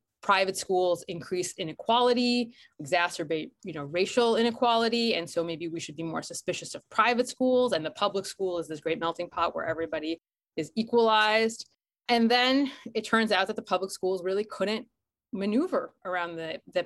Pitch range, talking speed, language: 170-230 Hz, 170 wpm, English